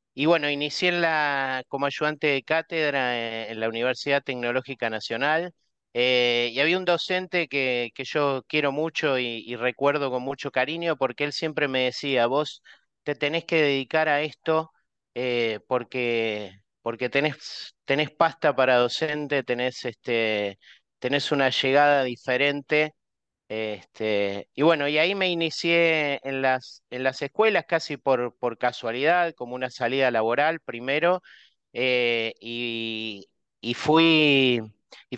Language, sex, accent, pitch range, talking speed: Spanish, male, Argentinian, 120-150 Hz, 140 wpm